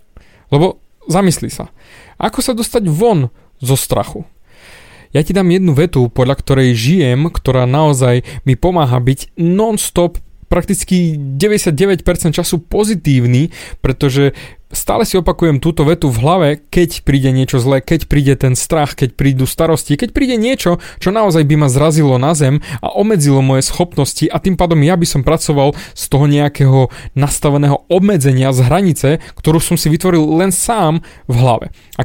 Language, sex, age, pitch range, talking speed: Slovak, male, 20-39, 130-175 Hz, 155 wpm